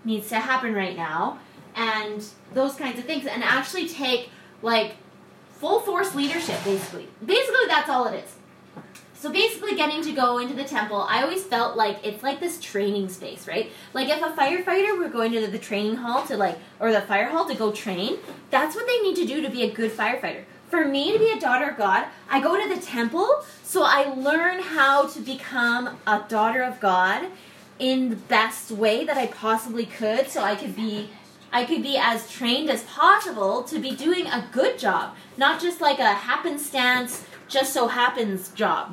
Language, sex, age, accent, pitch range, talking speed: English, female, 10-29, American, 220-295 Hz, 195 wpm